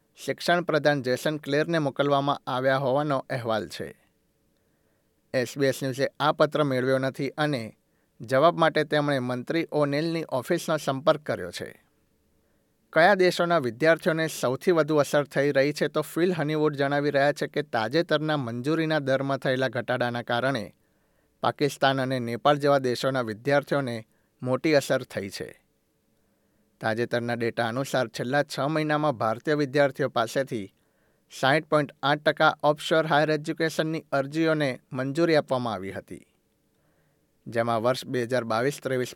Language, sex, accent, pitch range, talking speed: Gujarati, male, native, 130-155 Hz, 125 wpm